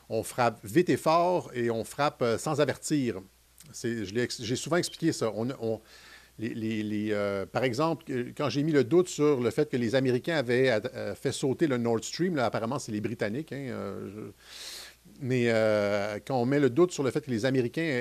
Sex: male